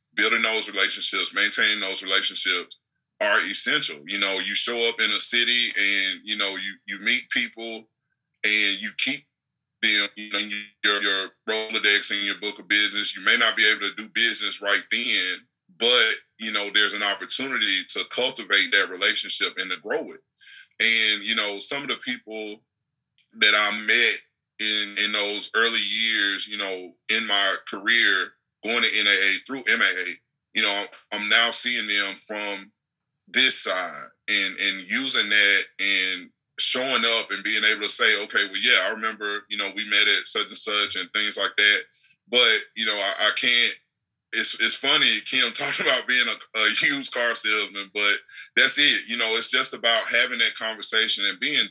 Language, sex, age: English, male, 20-39